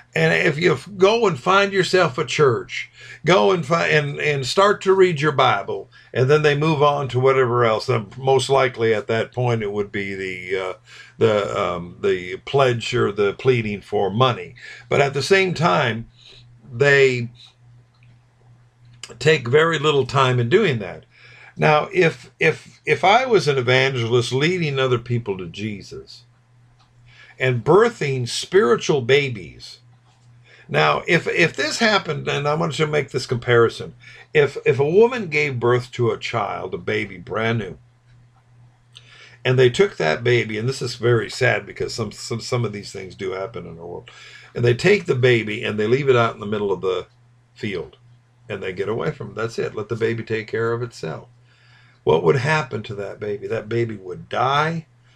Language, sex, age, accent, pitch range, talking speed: English, male, 50-69, American, 120-150 Hz, 180 wpm